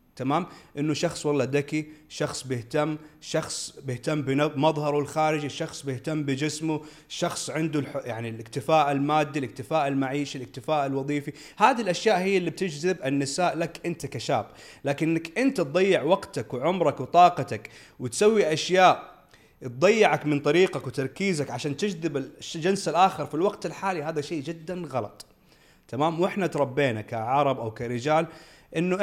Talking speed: 130 wpm